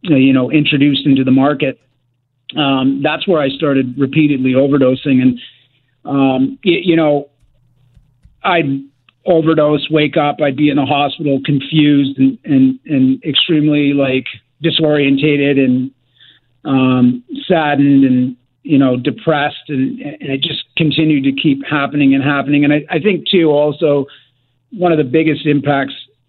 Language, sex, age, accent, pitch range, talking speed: English, male, 40-59, American, 130-150 Hz, 140 wpm